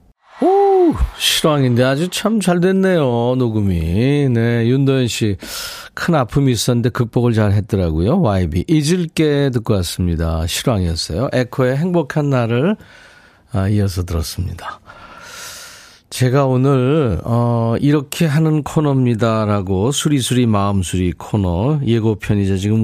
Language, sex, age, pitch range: Korean, male, 40-59, 100-145 Hz